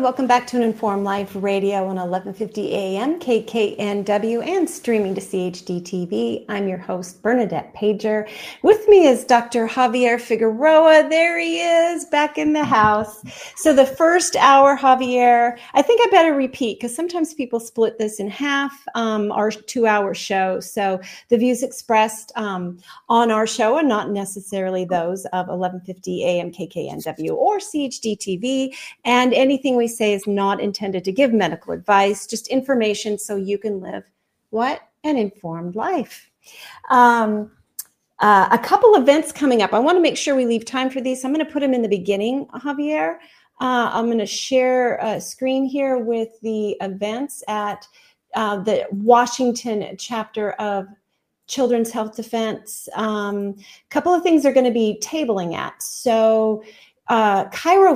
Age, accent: 40-59, American